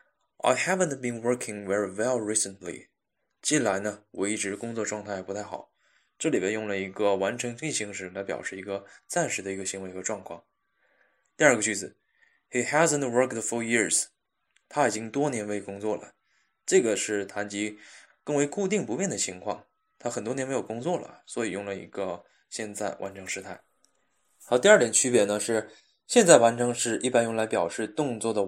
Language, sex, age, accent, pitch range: Chinese, male, 20-39, native, 100-120 Hz